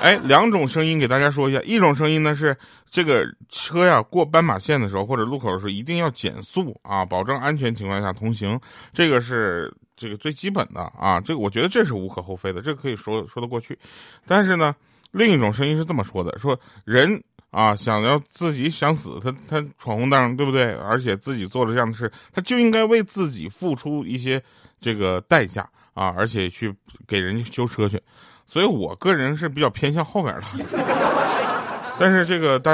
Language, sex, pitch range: Chinese, male, 105-150 Hz